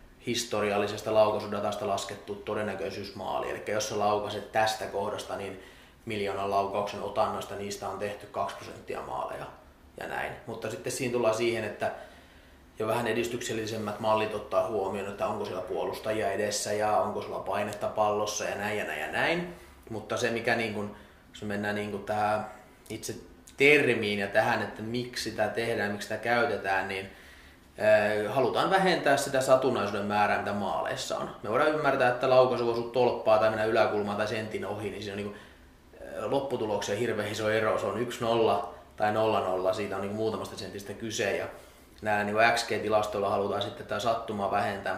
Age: 30-49